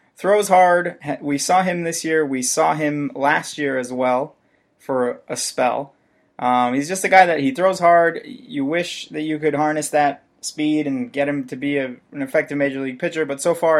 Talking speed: 205 wpm